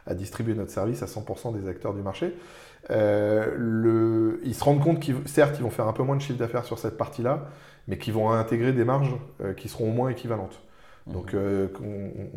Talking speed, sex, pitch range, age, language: 200 wpm, male, 100-120 Hz, 20-39, French